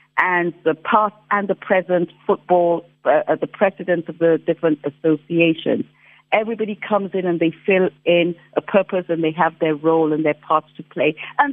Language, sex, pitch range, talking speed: English, female, 155-195 Hz, 175 wpm